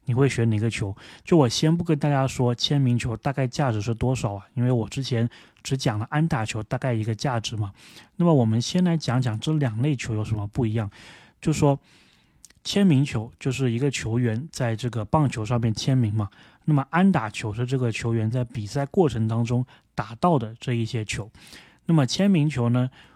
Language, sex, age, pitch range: Chinese, male, 20-39, 115-145 Hz